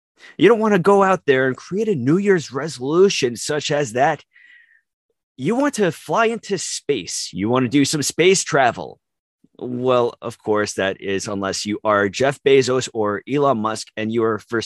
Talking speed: 190 wpm